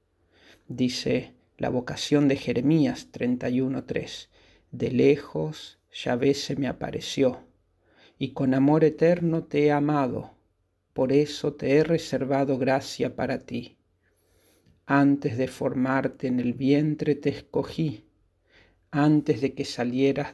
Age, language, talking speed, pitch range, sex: 40-59, Spanish, 120 wpm, 110-145 Hz, male